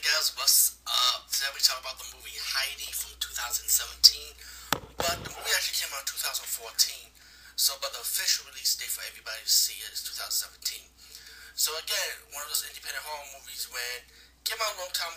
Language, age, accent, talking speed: English, 30-49, American, 185 wpm